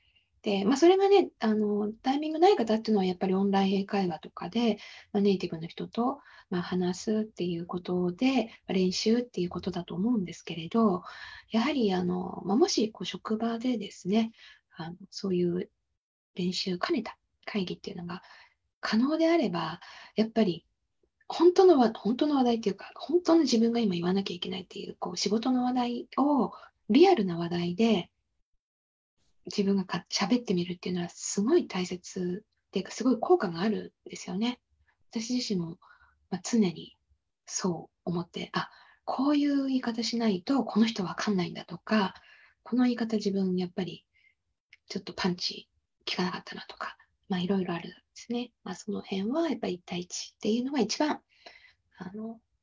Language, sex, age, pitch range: Japanese, female, 20-39, 185-235 Hz